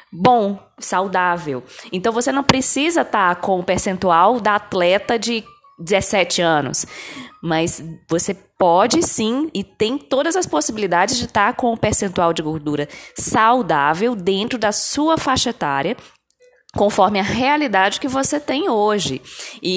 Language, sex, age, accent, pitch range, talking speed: Portuguese, female, 20-39, Brazilian, 175-235 Hz, 135 wpm